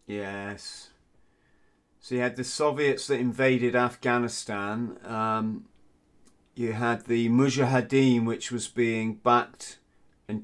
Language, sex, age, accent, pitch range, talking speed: English, male, 40-59, British, 100-120 Hz, 110 wpm